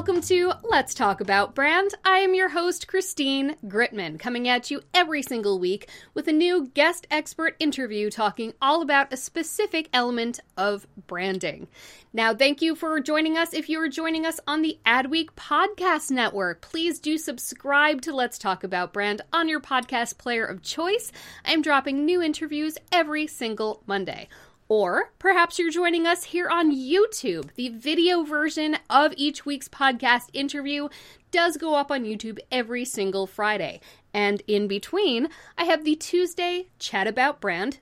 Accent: American